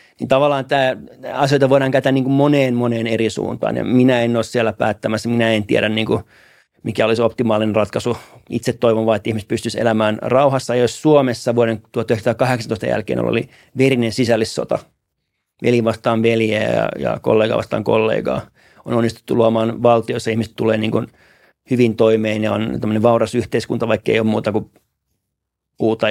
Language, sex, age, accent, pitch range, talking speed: Finnish, male, 30-49, native, 110-120 Hz, 155 wpm